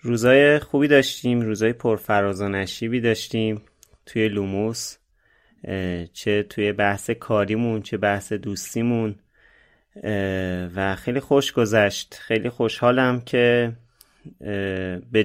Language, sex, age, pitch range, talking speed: Persian, male, 30-49, 100-120 Hz, 100 wpm